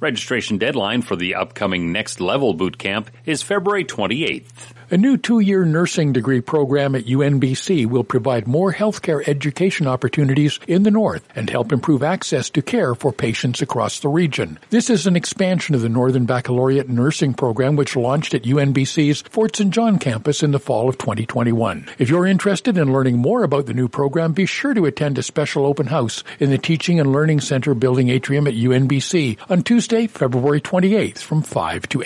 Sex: male